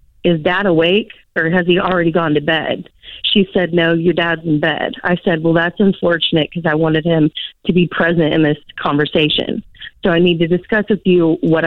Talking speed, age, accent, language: 205 wpm, 30-49, American, English